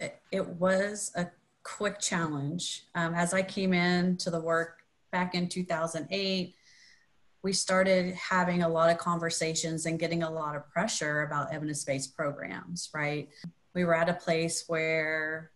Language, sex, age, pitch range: English, female, 30-49, 150-175 Hz